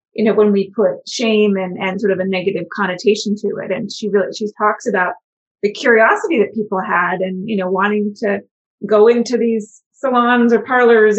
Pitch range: 205-235 Hz